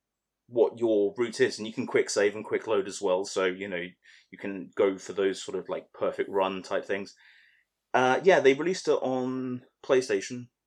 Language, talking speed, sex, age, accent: English, 200 wpm, male, 30-49, British